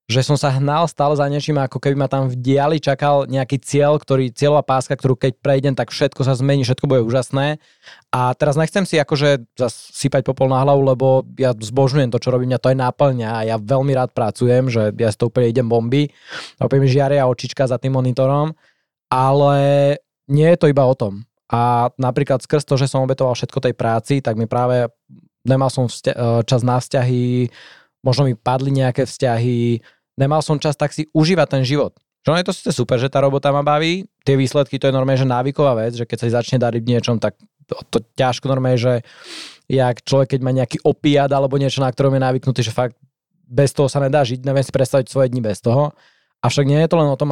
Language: Slovak